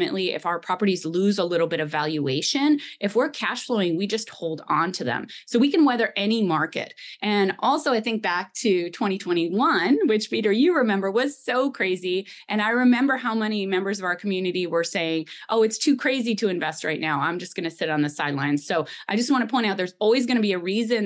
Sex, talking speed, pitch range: female, 230 wpm, 165-220 Hz